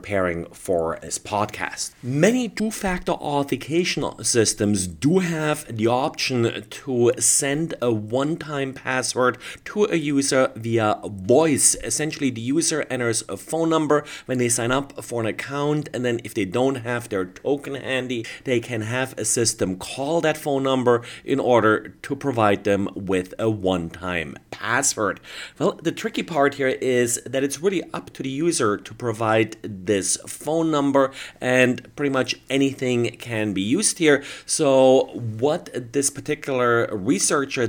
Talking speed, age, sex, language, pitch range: 155 wpm, 30-49, male, English, 110-140 Hz